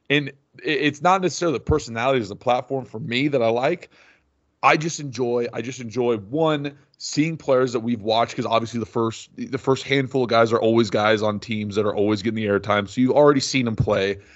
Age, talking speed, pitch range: 30-49, 215 wpm, 110-135 Hz